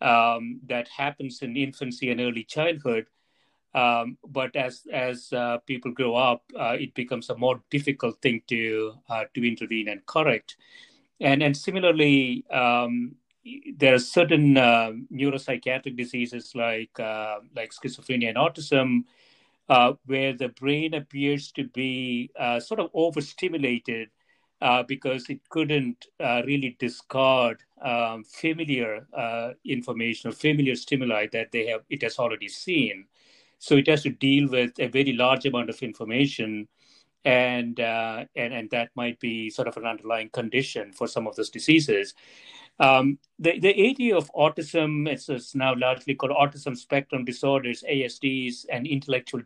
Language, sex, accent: English, male, Indian